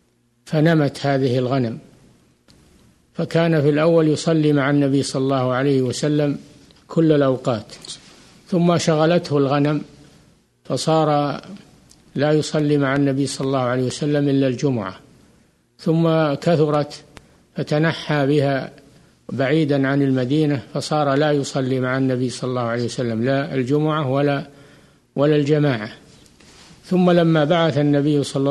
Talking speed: 115 wpm